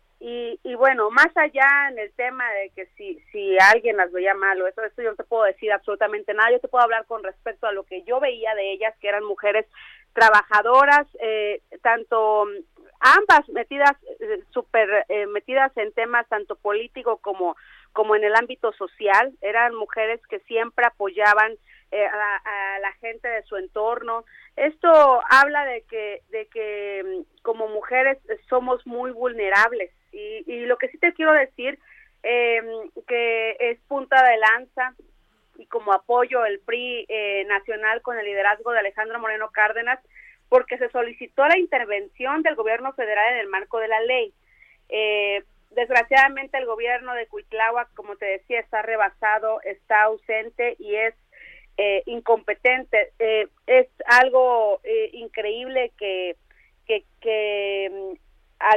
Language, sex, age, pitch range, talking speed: Spanish, female, 40-59, 210-260 Hz, 155 wpm